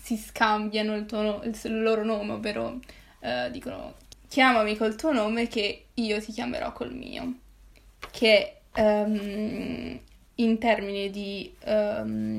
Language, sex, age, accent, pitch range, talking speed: Italian, female, 20-39, native, 210-230 Hz, 125 wpm